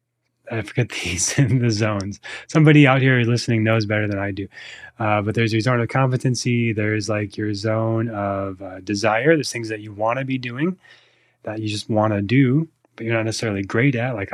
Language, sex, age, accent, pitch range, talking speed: English, male, 20-39, American, 105-125 Hz, 210 wpm